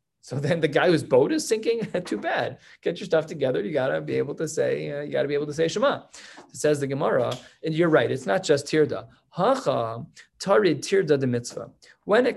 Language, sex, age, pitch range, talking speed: English, male, 20-39, 130-180 Hz, 230 wpm